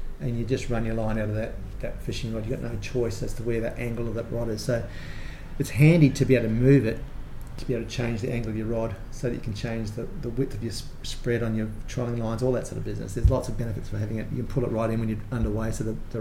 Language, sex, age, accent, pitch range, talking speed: English, male, 30-49, Australian, 110-130 Hz, 305 wpm